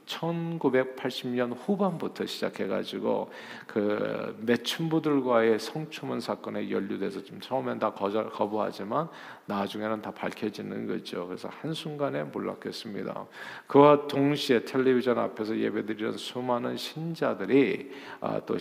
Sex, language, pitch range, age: male, Korean, 110-145 Hz, 50-69